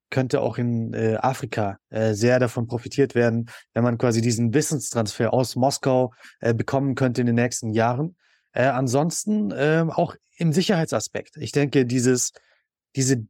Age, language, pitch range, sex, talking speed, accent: 20-39, German, 120-145 Hz, male, 150 wpm, German